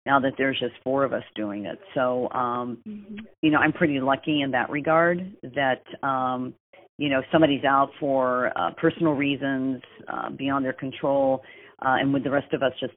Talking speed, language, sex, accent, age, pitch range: 190 wpm, English, female, American, 40-59, 130-145 Hz